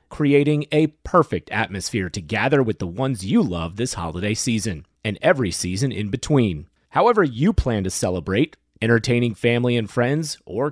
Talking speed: 160 wpm